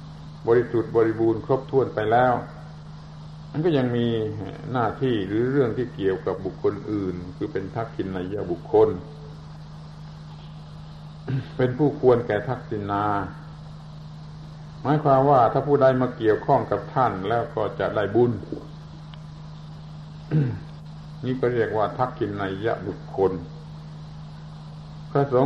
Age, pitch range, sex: 60-79, 125-155 Hz, male